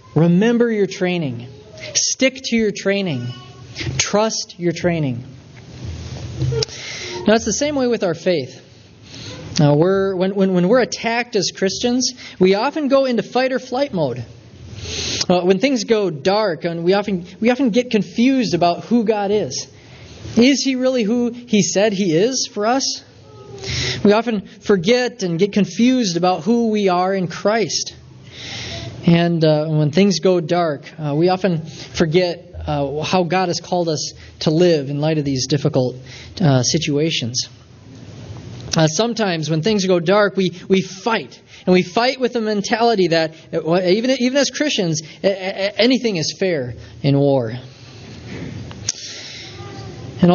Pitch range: 135-205 Hz